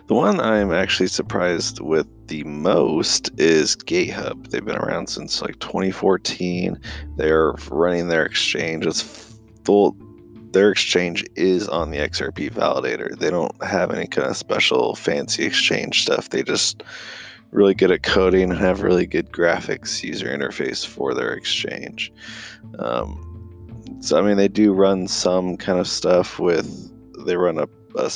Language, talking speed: English, 145 wpm